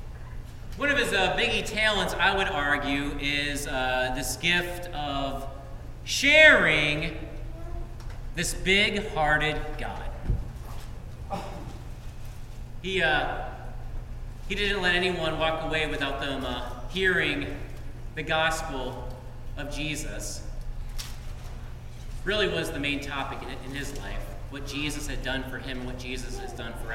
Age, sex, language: 40-59, male, English